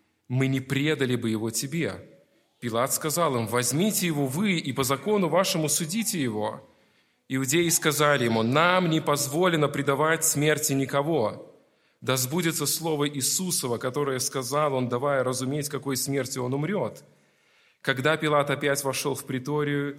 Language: Russian